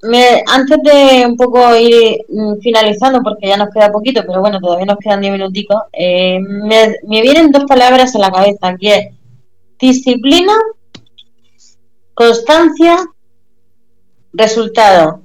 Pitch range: 195-245 Hz